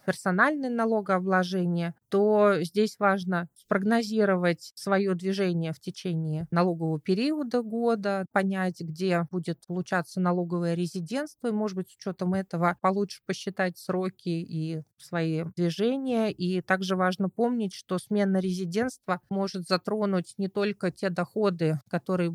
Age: 30-49